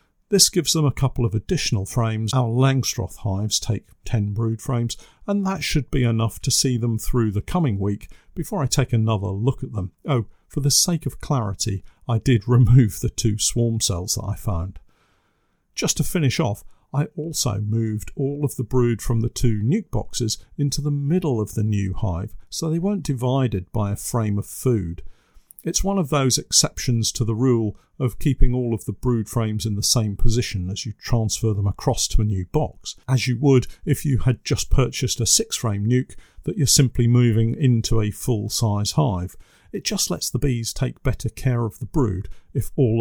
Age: 50-69